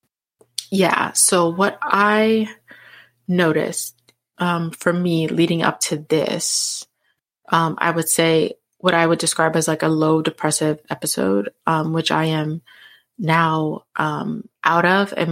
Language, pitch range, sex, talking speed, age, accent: English, 155-185 Hz, female, 135 wpm, 20-39, American